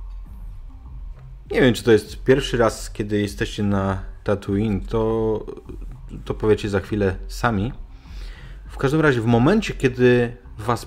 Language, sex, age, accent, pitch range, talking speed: Polish, male, 30-49, native, 95-125 Hz, 135 wpm